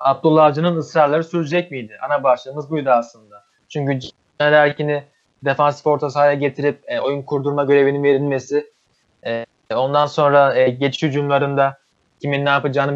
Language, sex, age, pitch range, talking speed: Turkish, male, 20-39, 130-155 Hz, 110 wpm